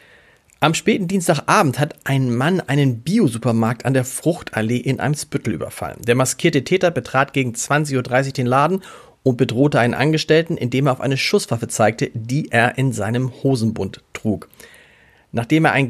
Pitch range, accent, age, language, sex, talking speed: 120-155 Hz, German, 40-59, German, male, 160 wpm